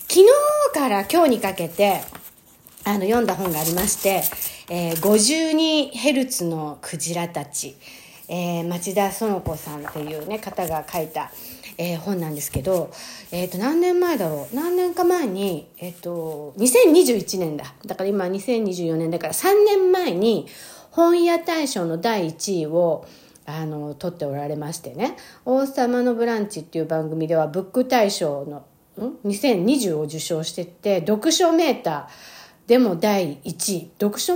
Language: Japanese